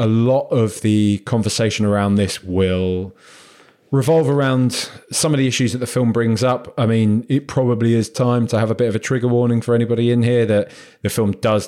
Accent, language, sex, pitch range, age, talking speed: British, English, male, 100-125 Hz, 20-39, 210 wpm